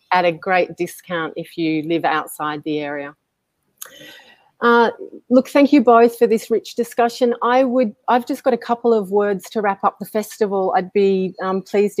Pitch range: 155-205 Hz